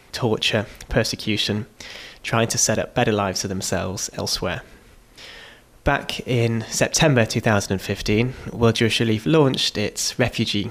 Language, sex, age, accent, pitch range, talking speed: English, male, 20-39, British, 105-120 Hz, 120 wpm